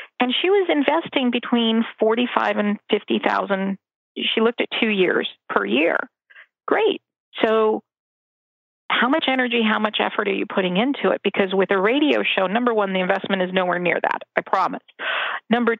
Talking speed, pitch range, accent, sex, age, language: 165 wpm, 195-245 Hz, American, female, 50-69, English